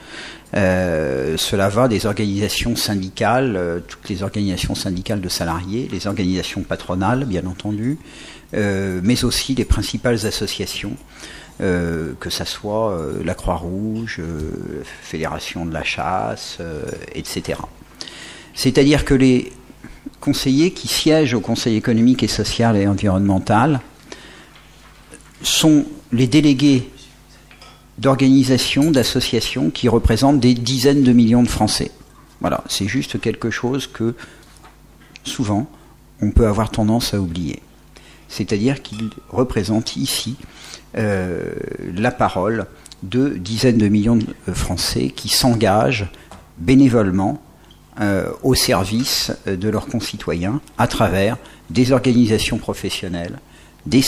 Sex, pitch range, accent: male, 95-125 Hz, French